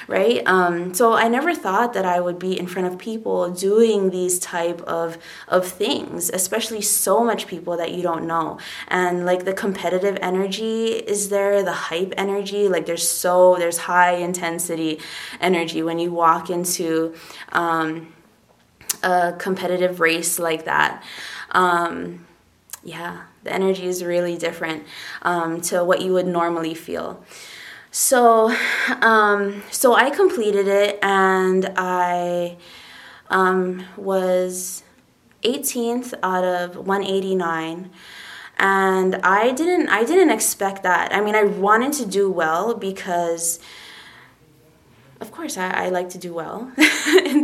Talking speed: 135 wpm